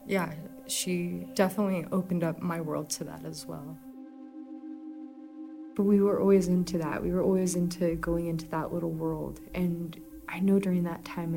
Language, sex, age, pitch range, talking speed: English, female, 20-39, 165-200 Hz, 170 wpm